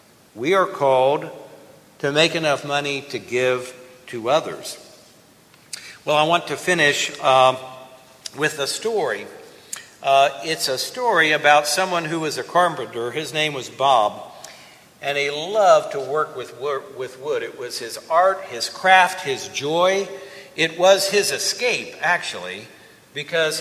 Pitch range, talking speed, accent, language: 145-190 Hz, 140 wpm, American, English